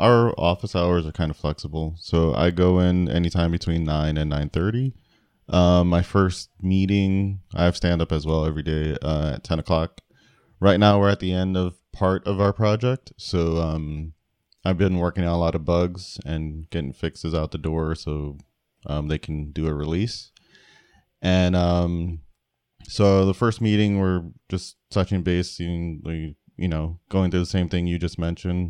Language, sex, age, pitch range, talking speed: English, male, 20-39, 80-95 Hz, 190 wpm